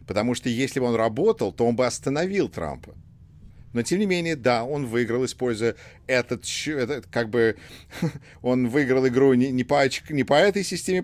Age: 50-69